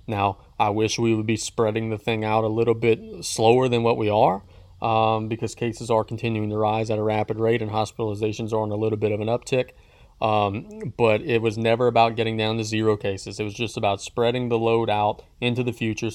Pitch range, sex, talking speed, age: 105-120 Hz, male, 225 wpm, 20-39